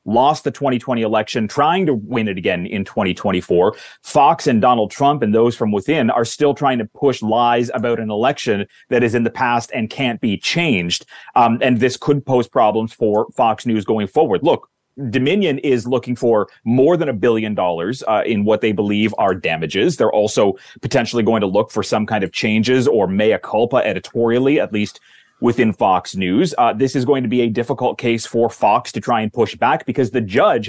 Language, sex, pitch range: English, male, 110-135 Hz